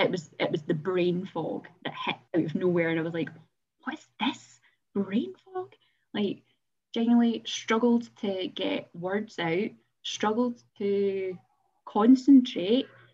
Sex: female